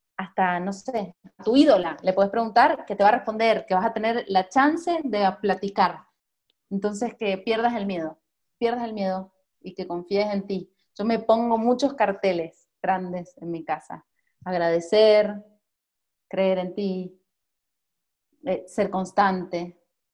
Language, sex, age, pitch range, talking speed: English, female, 30-49, 185-220 Hz, 150 wpm